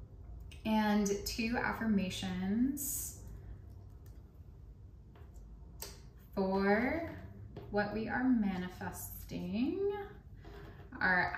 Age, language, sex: 10-29, English, female